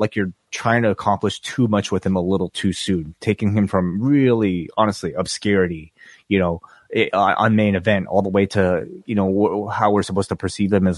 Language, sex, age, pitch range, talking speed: English, male, 30-49, 90-120 Hz, 210 wpm